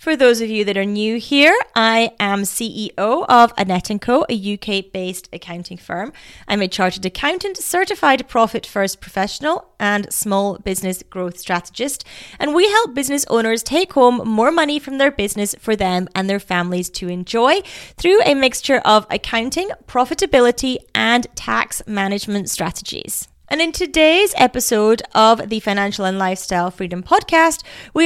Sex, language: female, English